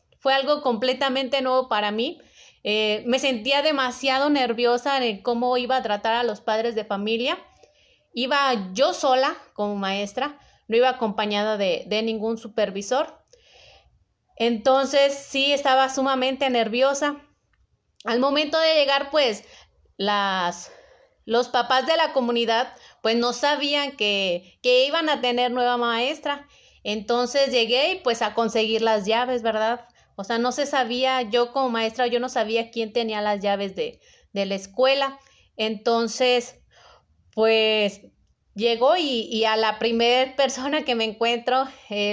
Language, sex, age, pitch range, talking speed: Spanish, female, 30-49, 220-270 Hz, 140 wpm